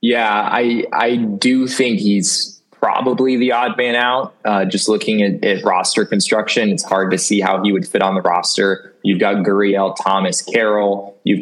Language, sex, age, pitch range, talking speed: English, male, 20-39, 95-115 Hz, 185 wpm